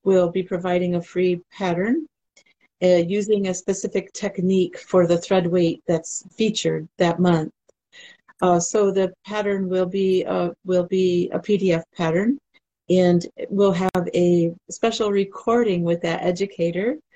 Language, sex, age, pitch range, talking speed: English, female, 40-59, 175-210 Hz, 135 wpm